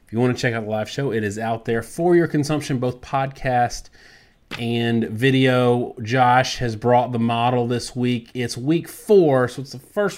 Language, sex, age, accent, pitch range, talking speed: English, male, 30-49, American, 120-155 Hz, 195 wpm